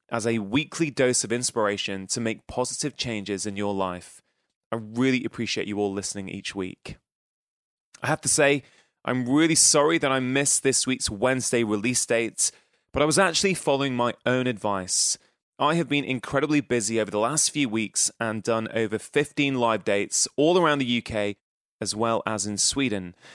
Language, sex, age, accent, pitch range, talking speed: English, male, 20-39, British, 110-135 Hz, 175 wpm